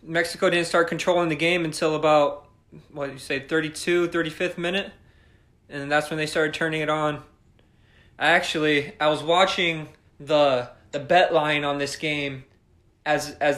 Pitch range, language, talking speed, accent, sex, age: 140-170 Hz, English, 170 wpm, American, male, 20-39